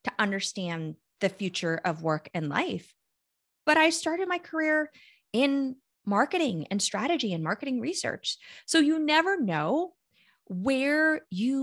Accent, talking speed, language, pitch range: American, 135 wpm, English, 195-260 Hz